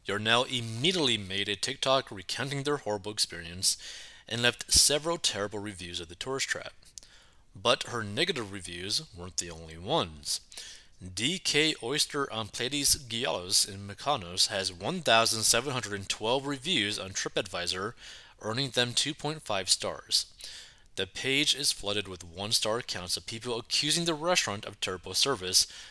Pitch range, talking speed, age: 95-140 Hz, 135 wpm, 30-49